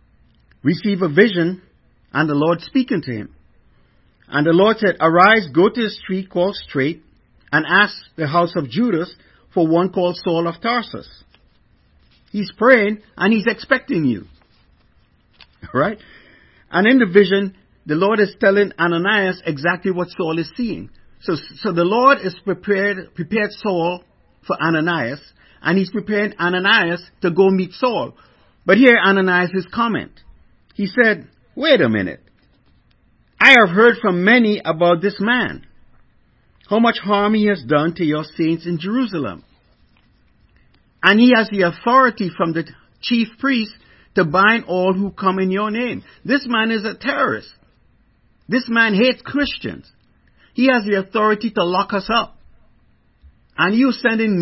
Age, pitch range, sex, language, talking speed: 50-69, 175-230 Hz, male, English, 150 wpm